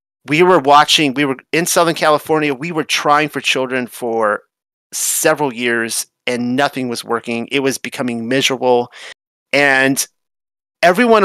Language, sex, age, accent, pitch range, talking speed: English, male, 30-49, American, 130-160 Hz, 140 wpm